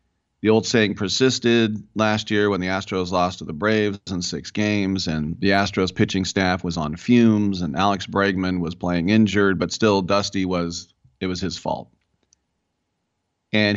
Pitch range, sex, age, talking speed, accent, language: 90-105 Hz, male, 40-59, 170 wpm, American, English